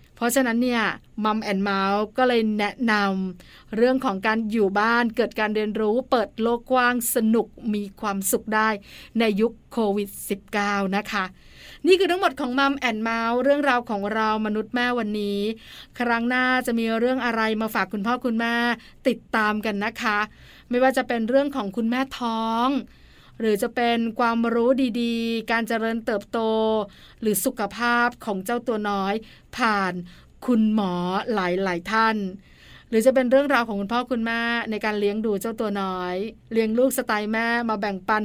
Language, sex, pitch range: Thai, female, 205-240 Hz